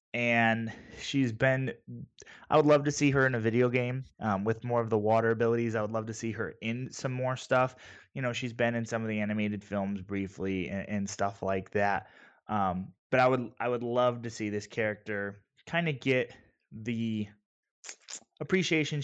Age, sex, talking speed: 20-39, male, 195 wpm